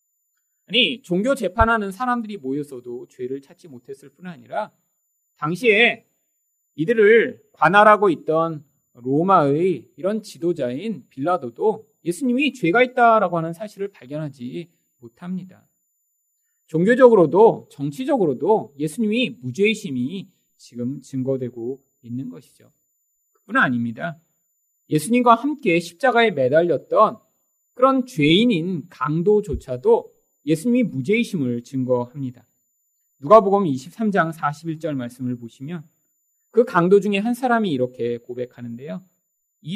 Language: Korean